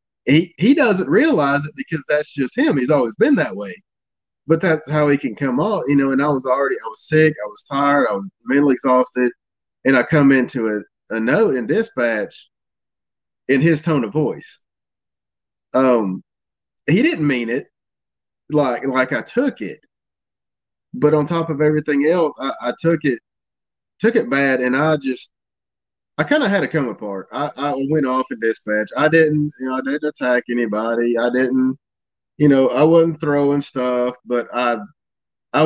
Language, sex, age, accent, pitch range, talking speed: English, male, 20-39, American, 120-150 Hz, 185 wpm